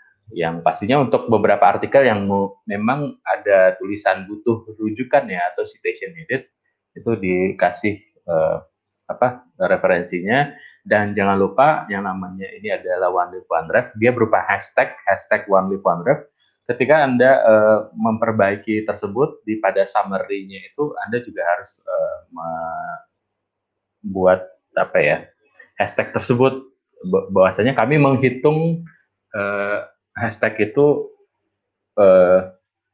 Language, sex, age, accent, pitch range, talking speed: Indonesian, male, 20-39, native, 95-130 Hz, 115 wpm